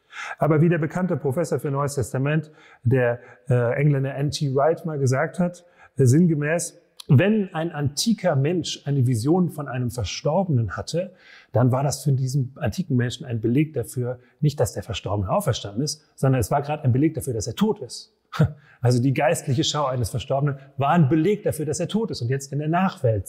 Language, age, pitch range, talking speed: German, 30-49, 130-175 Hz, 190 wpm